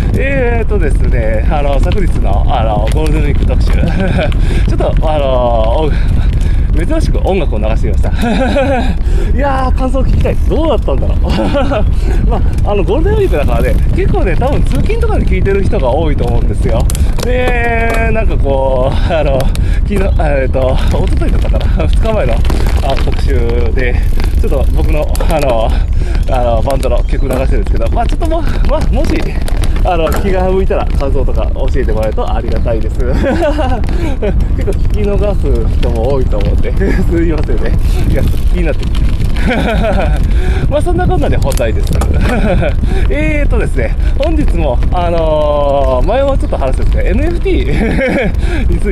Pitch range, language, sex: 75-105 Hz, Japanese, male